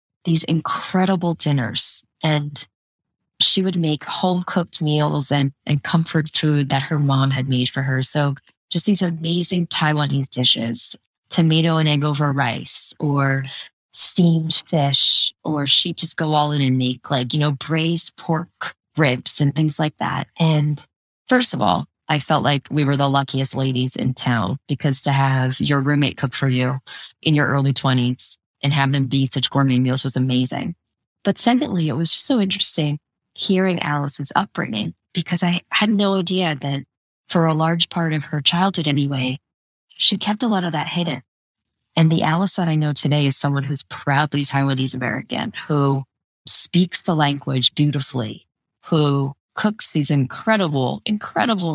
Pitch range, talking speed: 135-165 Hz, 160 wpm